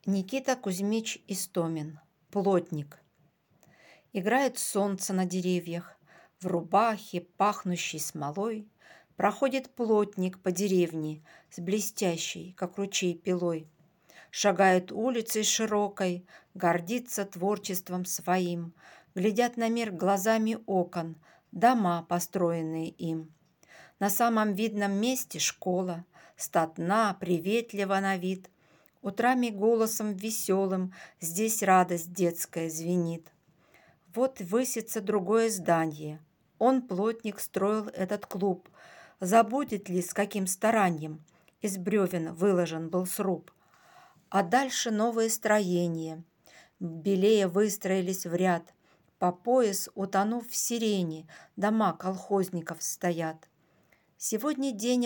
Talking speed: 95 wpm